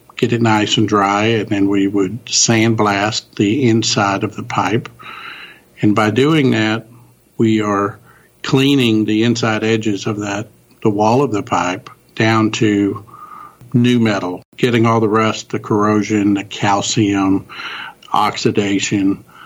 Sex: male